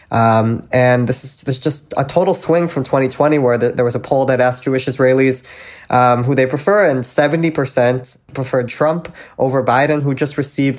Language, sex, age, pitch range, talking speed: English, male, 20-39, 125-145 Hz, 180 wpm